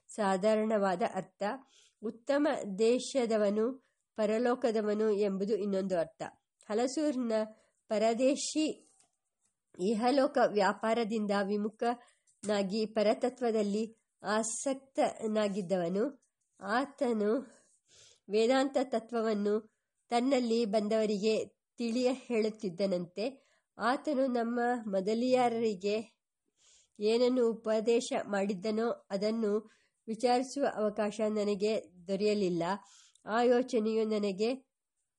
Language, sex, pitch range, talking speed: English, male, 210-245 Hz, 65 wpm